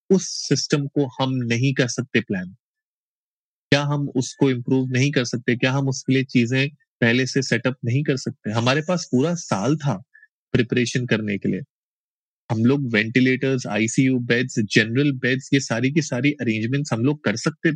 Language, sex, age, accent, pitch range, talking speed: Hindi, male, 30-49, native, 120-140 Hz, 170 wpm